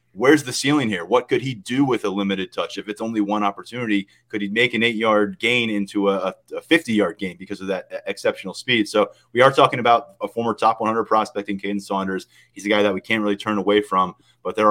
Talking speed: 235 wpm